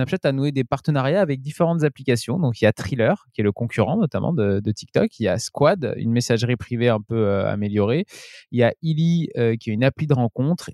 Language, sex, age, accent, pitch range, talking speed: French, male, 20-39, French, 110-140 Hz, 240 wpm